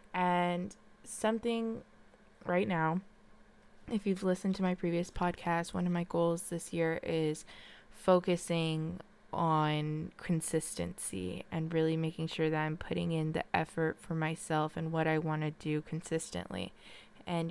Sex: female